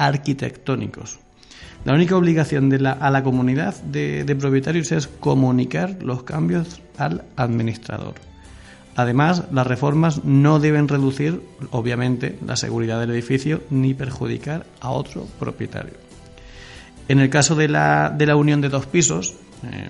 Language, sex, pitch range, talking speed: Spanish, male, 120-145 Hz, 140 wpm